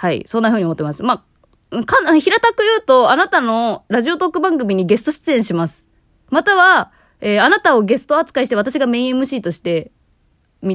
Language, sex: Japanese, female